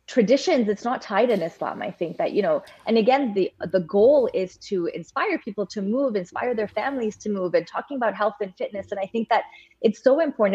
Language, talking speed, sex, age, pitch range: English, 230 wpm, female, 20-39, 190-240 Hz